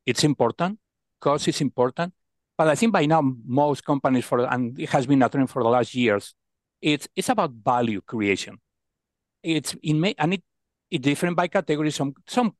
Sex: male